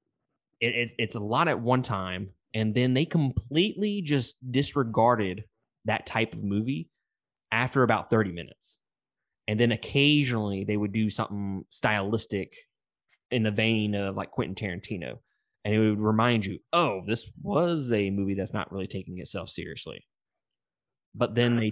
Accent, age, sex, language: American, 20-39, male, English